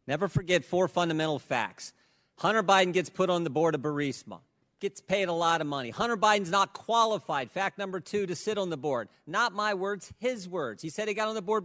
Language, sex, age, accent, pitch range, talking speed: English, male, 50-69, American, 160-205 Hz, 225 wpm